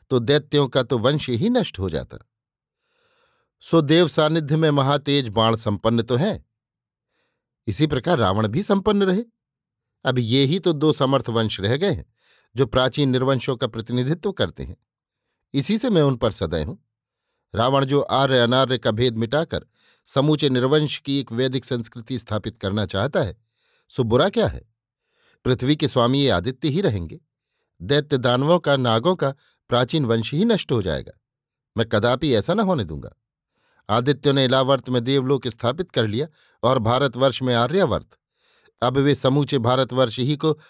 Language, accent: Hindi, native